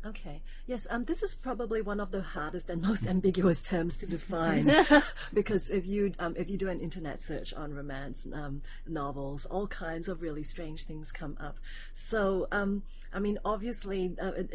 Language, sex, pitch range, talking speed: English, female, 155-195 Hz, 180 wpm